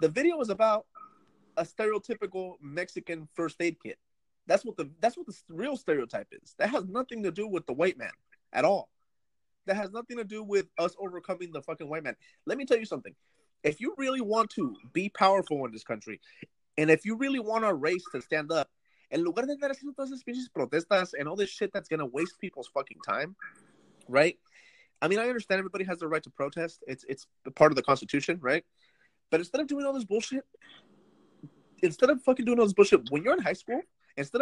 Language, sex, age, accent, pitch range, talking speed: English, male, 30-49, American, 160-230 Hz, 205 wpm